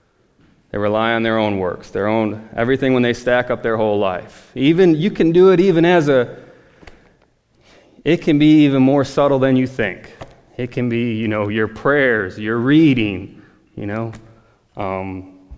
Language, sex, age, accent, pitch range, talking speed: English, male, 20-39, American, 110-155 Hz, 175 wpm